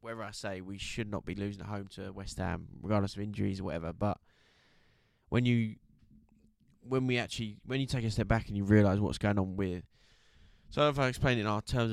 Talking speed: 225 wpm